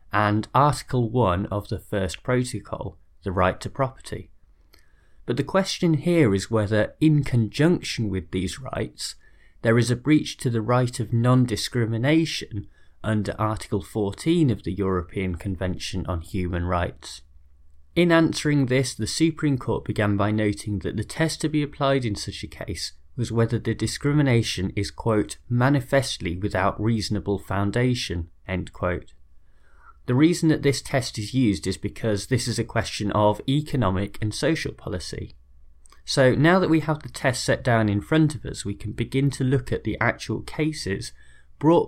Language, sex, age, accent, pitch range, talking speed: English, male, 30-49, British, 100-135 Hz, 160 wpm